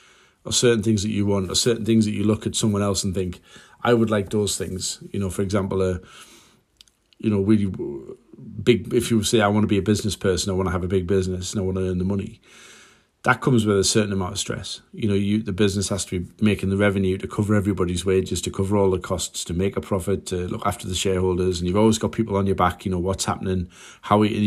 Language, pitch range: English, 95-110 Hz